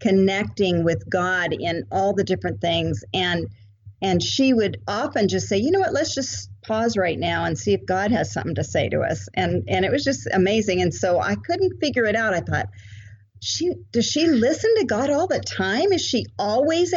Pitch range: 175-255 Hz